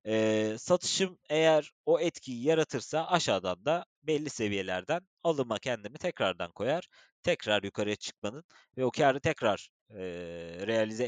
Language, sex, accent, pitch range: Turkish, male, native, 105-150 Hz